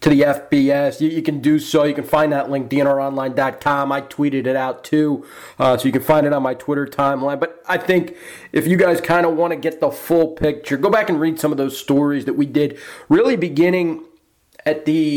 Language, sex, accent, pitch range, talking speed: English, male, American, 145-175 Hz, 225 wpm